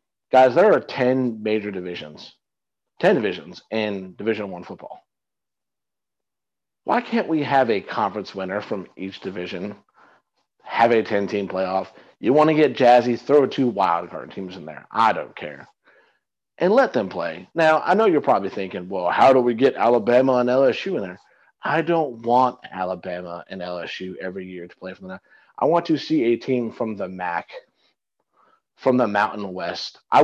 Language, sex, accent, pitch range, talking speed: English, male, American, 95-130 Hz, 175 wpm